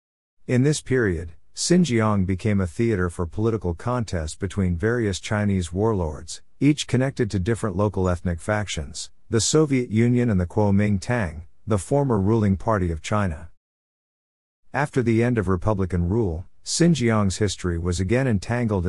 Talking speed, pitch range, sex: 140 wpm, 90-115 Hz, male